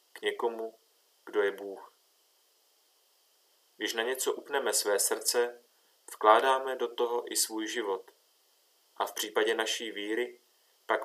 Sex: male